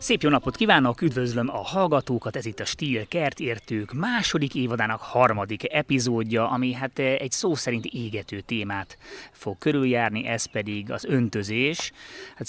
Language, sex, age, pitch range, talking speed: Hungarian, male, 20-39, 105-125 Hz, 145 wpm